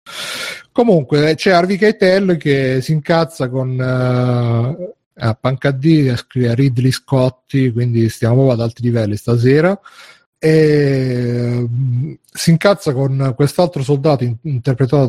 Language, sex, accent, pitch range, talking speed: Italian, male, native, 120-145 Hz, 120 wpm